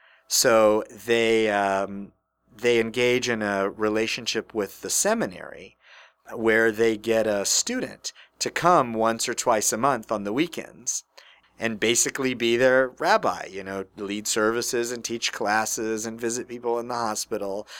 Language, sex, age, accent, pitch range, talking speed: English, male, 40-59, American, 100-115 Hz, 150 wpm